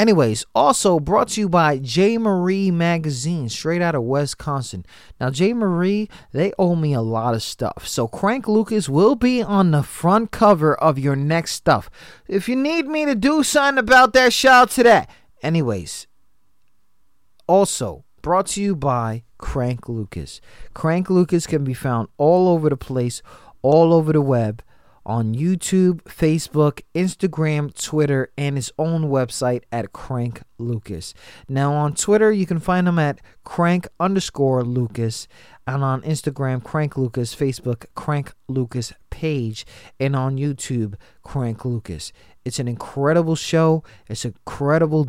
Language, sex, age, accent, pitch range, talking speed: English, male, 30-49, American, 125-180 Hz, 150 wpm